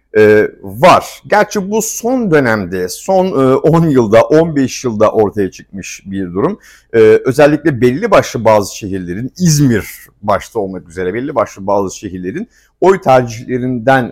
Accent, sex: native, male